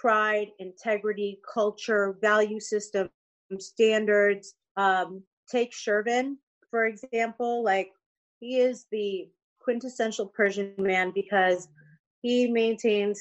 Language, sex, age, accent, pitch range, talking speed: English, female, 30-49, American, 200-235 Hz, 95 wpm